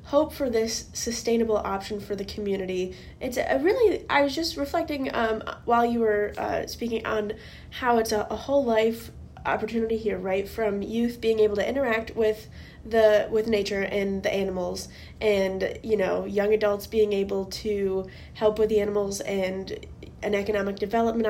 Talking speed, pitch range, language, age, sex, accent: 170 wpm, 205-235 Hz, English, 10-29, female, American